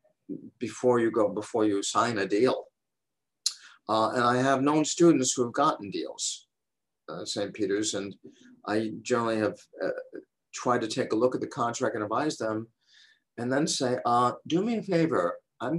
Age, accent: 50-69, American